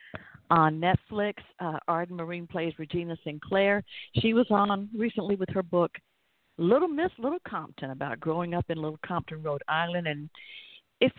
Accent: American